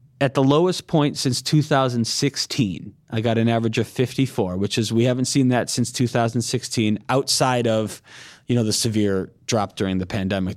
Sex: male